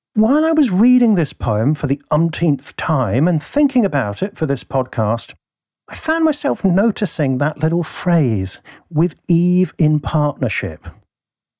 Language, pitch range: English, 125-185 Hz